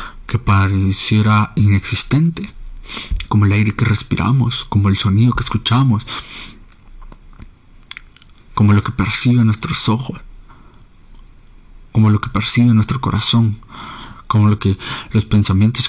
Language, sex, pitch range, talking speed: Spanish, male, 95-115 Hz, 115 wpm